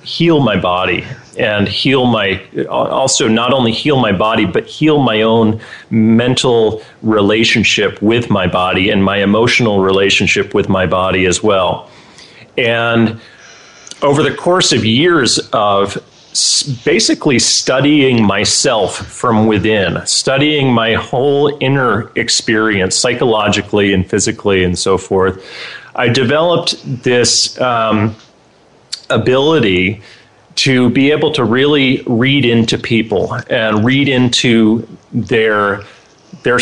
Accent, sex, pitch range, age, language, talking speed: American, male, 100-125 Hz, 30-49, English, 115 wpm